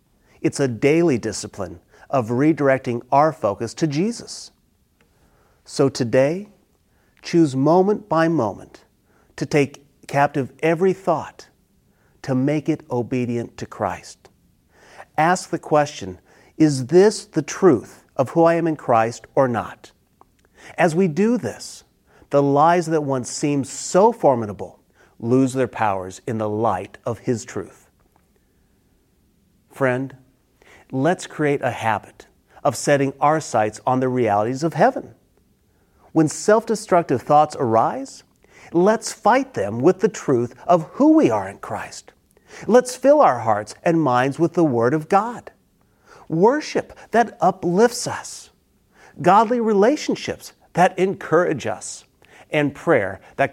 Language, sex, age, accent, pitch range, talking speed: English, male, 40-59, American, 125-180 Hz, 130 wpm